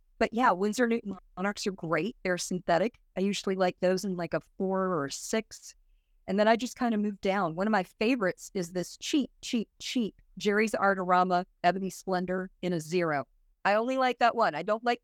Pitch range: 180-220 Hz